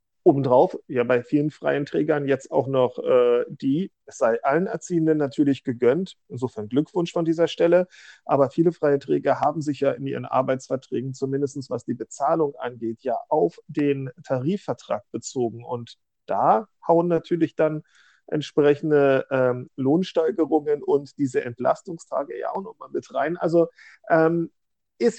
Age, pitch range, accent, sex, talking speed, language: 40-59, 135-185 Hz, German, male, 145 wpm, German